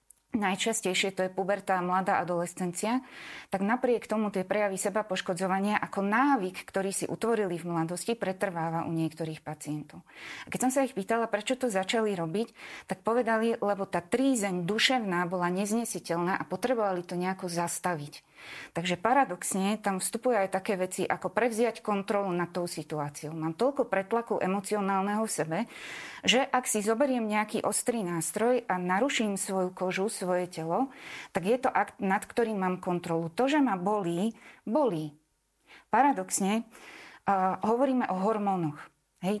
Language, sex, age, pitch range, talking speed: Slovak, female, 20-39, 185-235 Hz, 150 wpm